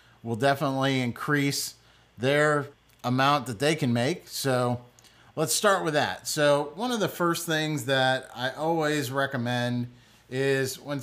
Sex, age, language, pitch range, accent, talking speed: male, 40-59, English, 120-150 Hz, American, 140 wpm